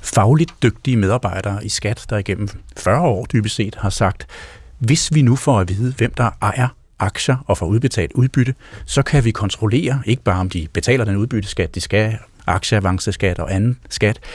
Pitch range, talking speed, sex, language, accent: 100-130 Hz, 180 wpm, male, Danish, native